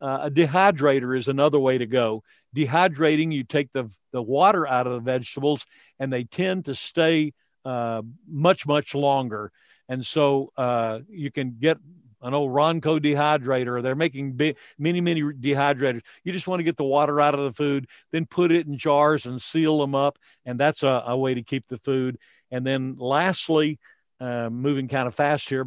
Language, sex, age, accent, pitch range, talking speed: English, male, 50-69, American, 130-160 Hz, 190 wpm